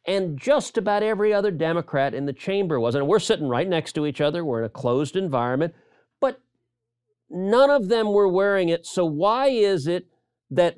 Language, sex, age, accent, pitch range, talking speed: English, male, 50-69, American, 125-175 Hz, 195 wpm